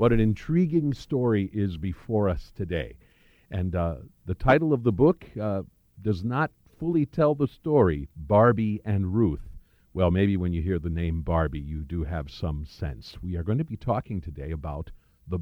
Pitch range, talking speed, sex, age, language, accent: 85-115 Hz, 185 wpm, male, 50-69, English, American